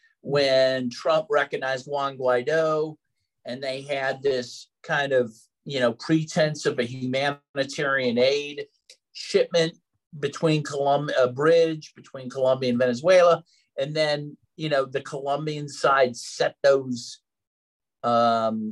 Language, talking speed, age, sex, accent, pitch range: English, 120 wpm, 50-69, male, American, 130-170 Hz